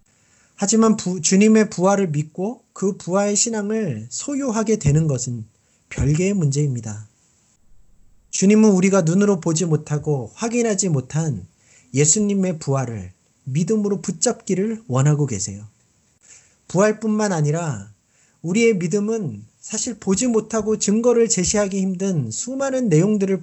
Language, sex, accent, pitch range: Korean, male, native, 150-210 Hz